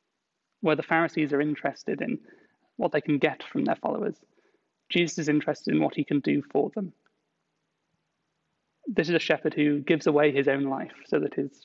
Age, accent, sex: 30-49, British, male